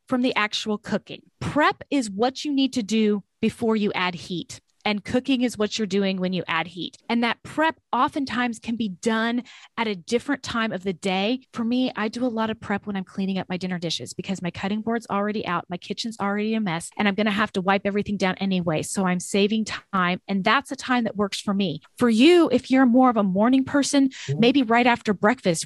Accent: American